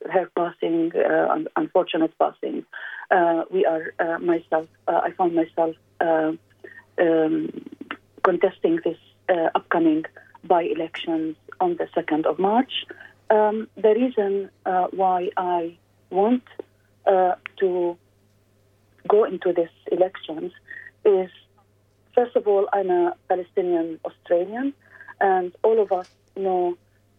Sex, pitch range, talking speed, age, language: female, 160-200 Hz, 115 wpm, 40-59, English